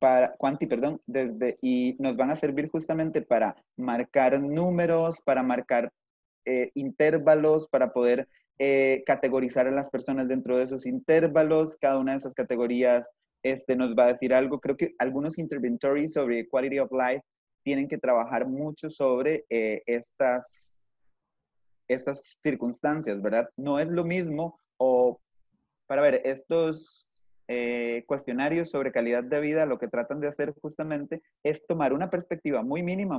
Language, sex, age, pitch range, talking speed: Spanish, male, 30-49, 125-155 Hz, 150 wpm